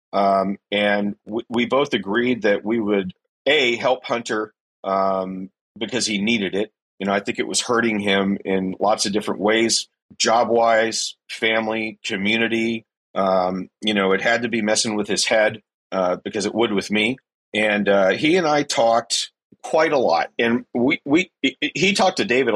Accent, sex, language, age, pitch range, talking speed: American, male, English, 40-59, 105-125 Hz, 175 wpm